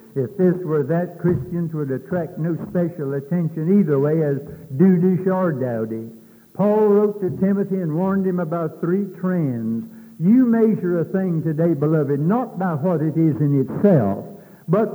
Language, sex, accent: English, male, American